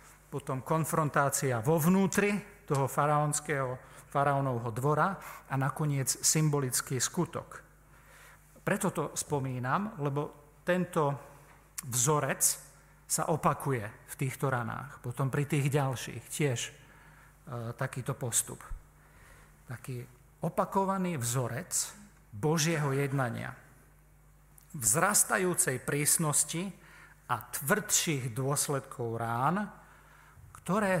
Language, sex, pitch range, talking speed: Slovak, male, 130-150 Hz, 80 wpm